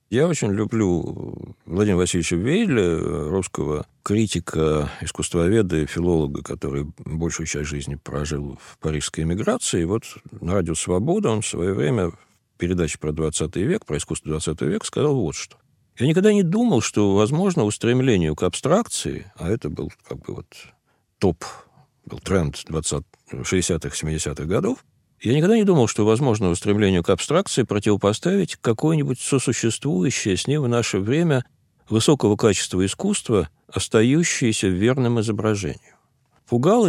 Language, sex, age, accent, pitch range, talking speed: Russian, male, 50-69, native, 85-125 Hz, 140 wpm